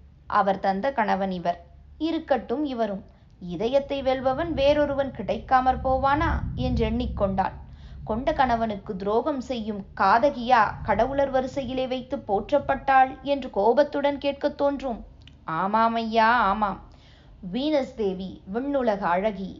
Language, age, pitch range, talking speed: Tamil, 20-39, 200-270 Hz, 95 wpm